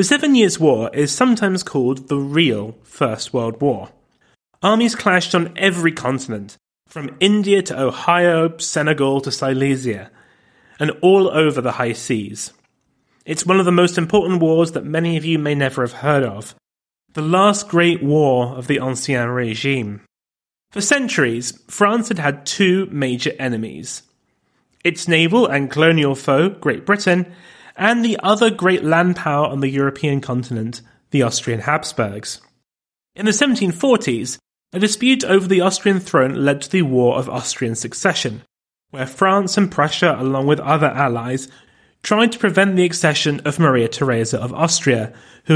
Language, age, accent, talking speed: English, 30-49, British, 155 wpm